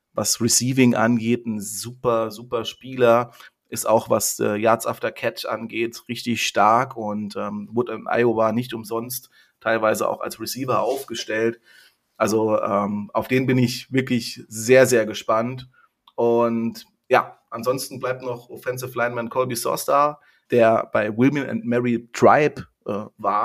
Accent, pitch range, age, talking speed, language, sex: German, 115-130 Hz, 30-49, 145 wpm, German, male